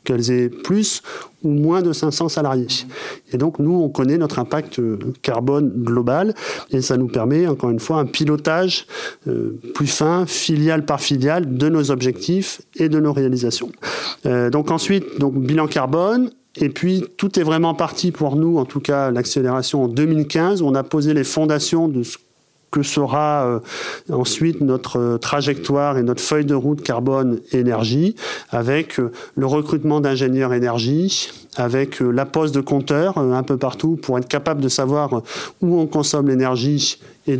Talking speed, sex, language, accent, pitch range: 170 wpm, male, French, French, 130-155 Hz